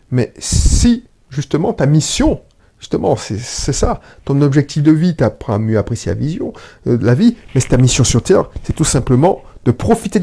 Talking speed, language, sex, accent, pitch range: 195 wpm, French, male, French, 135-215 Hz